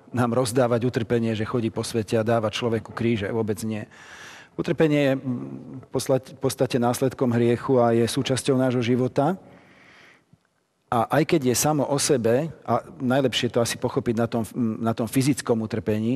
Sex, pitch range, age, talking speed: male, 115-135 Hz, 40-59, 160 wpm